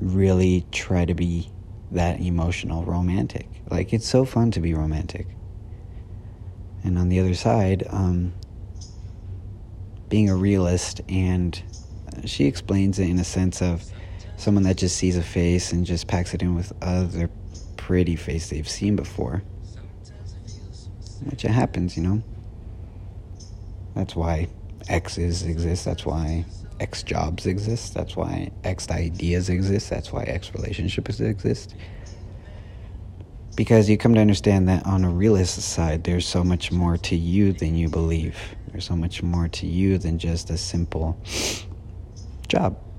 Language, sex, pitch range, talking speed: English, male, 85-100 Hz, 145 wpm